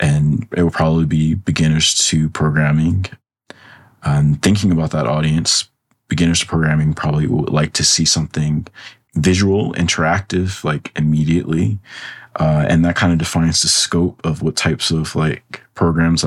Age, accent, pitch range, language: 20-39, American, 80-90 Hz, English